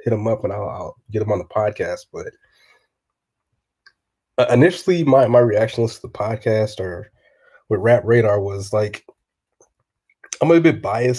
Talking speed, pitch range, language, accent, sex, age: 160 wpm, 105-130 Hz, English, American, male, 20-39